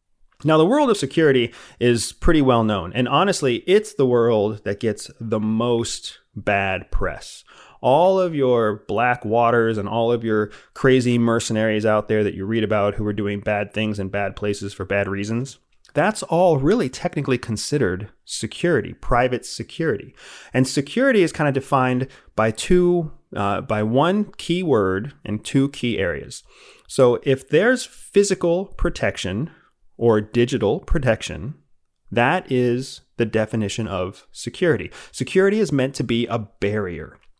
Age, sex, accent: 30-49, male, American